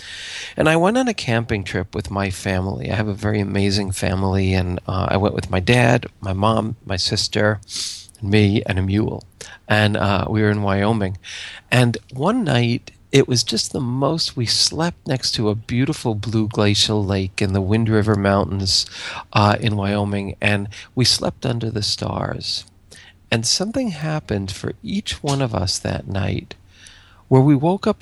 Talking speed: 175 wpm